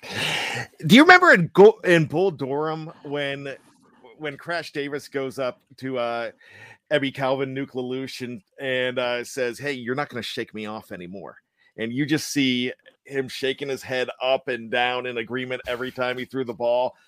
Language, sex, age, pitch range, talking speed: English, male, 40-59, 125-155 Hz, 180 wpm